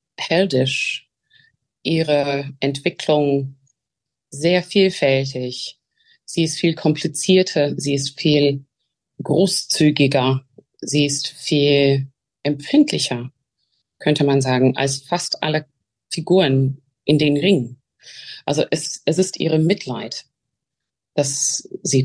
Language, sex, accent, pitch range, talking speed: German, female, German, 135-165 Hz, 95 wpm